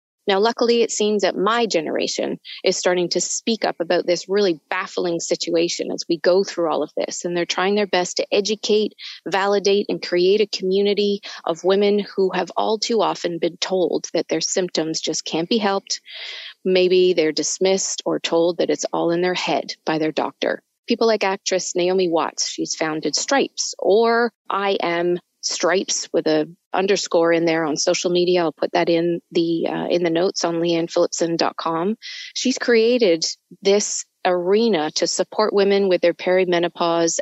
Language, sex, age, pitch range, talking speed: English, female, 30-49, 170-205 Hz, 170 wpm